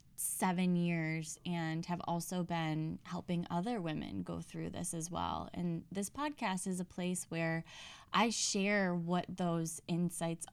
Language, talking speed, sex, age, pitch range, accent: English, 150 wpm, female, 10-29, 165-185 Hz, American